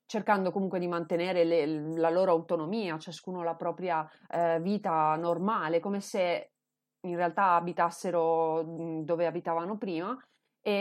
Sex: female